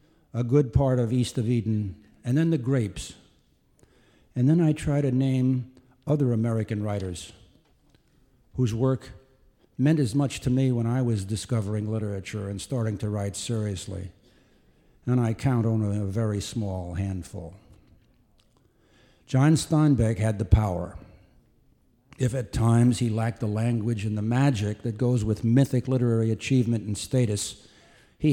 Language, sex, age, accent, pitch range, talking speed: English, male, 60-79, American, 105-130 Hz, 145 wpm